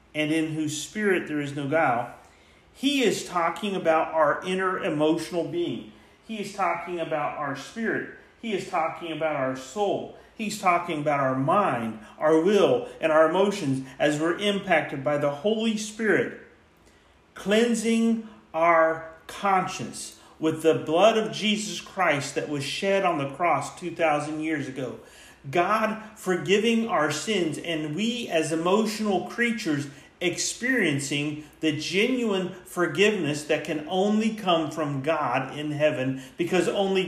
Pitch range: 150-195 Hz